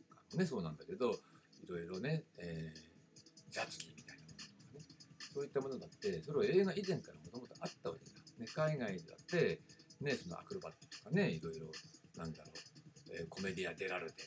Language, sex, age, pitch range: Japanese, male, 50-69, 140-185 Hz